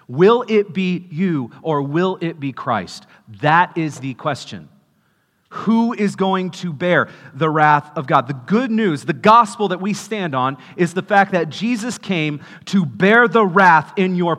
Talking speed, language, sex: 180 wpm, English, male